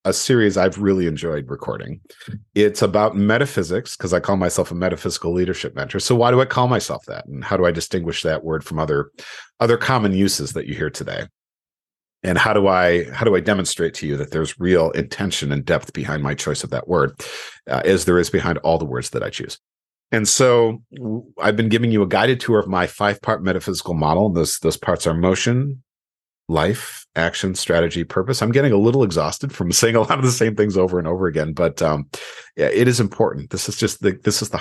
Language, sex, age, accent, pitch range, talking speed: English, male, 40-59, American, 80-110 Hz, 225 wpm